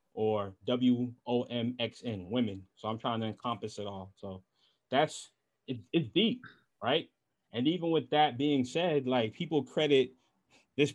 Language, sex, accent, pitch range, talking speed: English, male, American, 125-190 Hz, 135 wpm